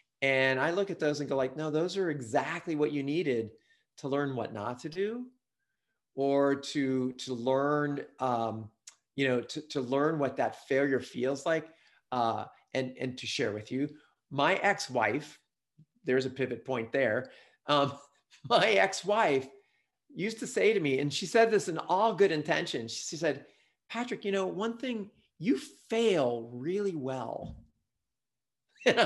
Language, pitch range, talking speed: English, 135-205 Hz, 160 wpm